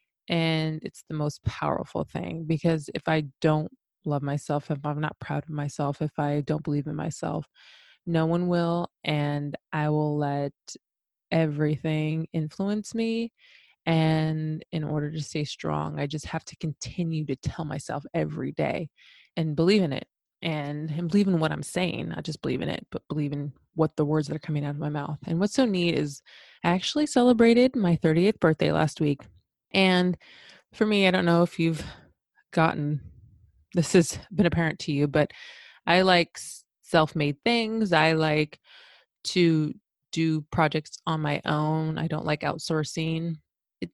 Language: English